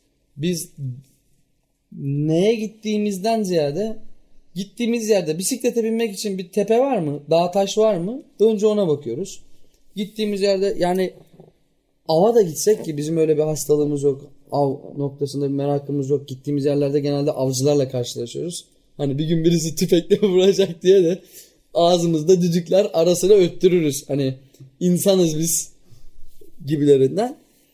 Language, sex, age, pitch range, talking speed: Turkish, male, 30-49, 145-200 Hz, 130 wpm